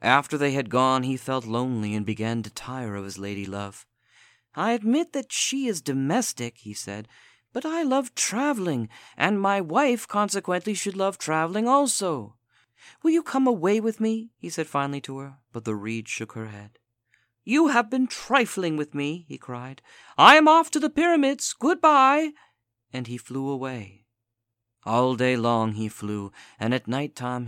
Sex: male